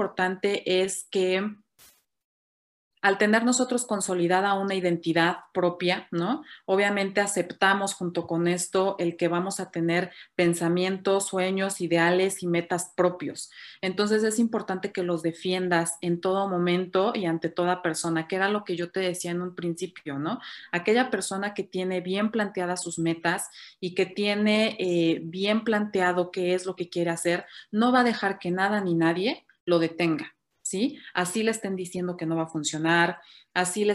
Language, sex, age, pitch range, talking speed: Spanish, female, 30-49, 170-195 Hz, 165 wpm